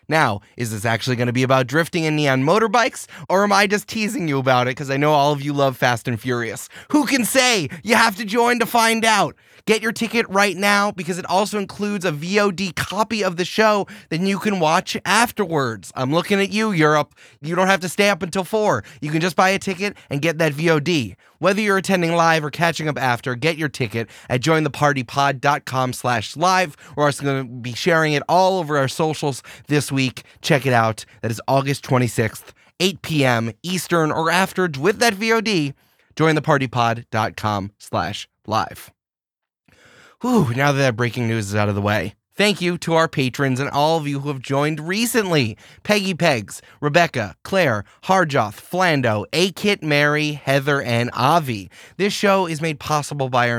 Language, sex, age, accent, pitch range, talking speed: English, male, 30-49, American, 125-190 Hz, 195 wpm